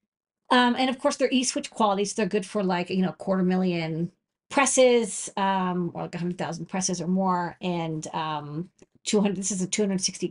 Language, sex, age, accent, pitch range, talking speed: English, female, 40-59, American, 185-230 Hz, 210 wpm